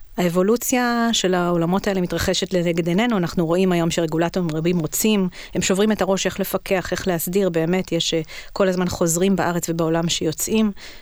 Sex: female